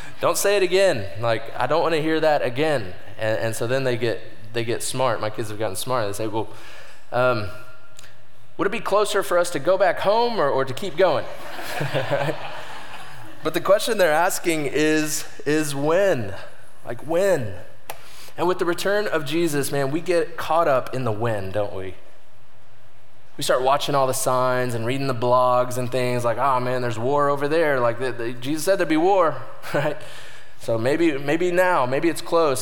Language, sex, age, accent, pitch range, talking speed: English, male, 20-39, American, 120-155 Hz, 190 wpm